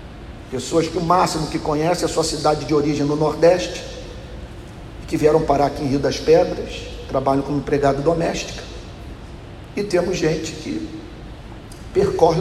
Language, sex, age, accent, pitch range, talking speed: Portuguese, male, 40-59, Brazilian, 135-170 Hz, 150 wpm